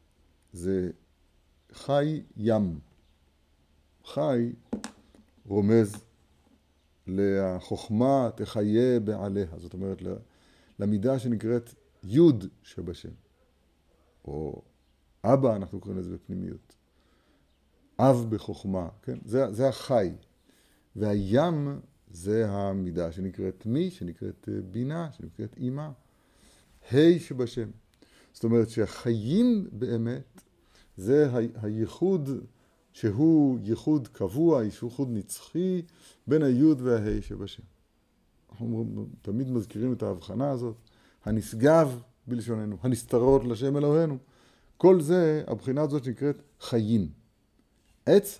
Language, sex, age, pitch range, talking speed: Hebrew, male, 50-69, 100-135 Hz, 90 wpm